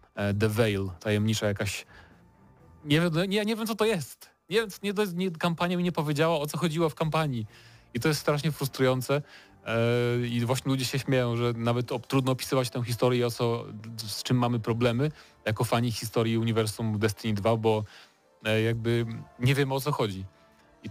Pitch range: 110-130 Hz